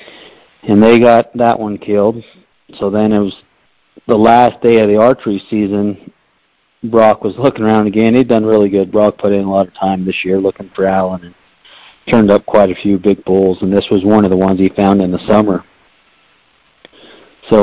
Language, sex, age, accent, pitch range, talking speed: English, male, 40-59, American, 100-110 Hz, 200 wpm